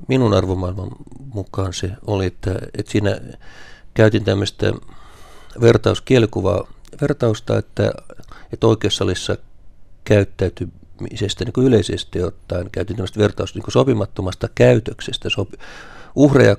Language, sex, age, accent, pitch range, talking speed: Finnish, male, 50-69, native, 95-115 Hz, 100 wpm